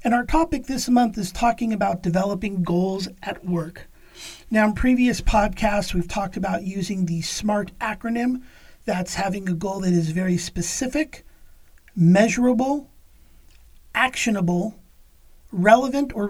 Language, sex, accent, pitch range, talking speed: English, male, American, 180-220 Hz, 130 wpm